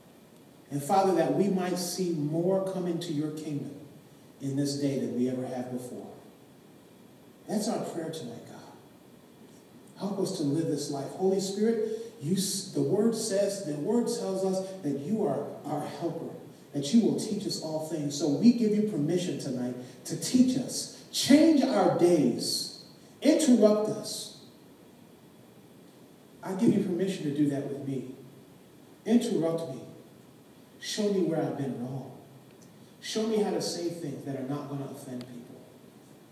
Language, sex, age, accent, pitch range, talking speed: English, male, 40-59, American, 135-190 Hz, 155 wpm